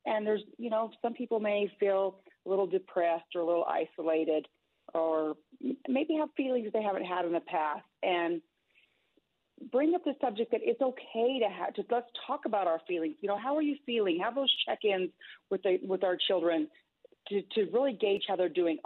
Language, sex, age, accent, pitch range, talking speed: English, female, 40-59, American, 175-255 Hz, 195 wpm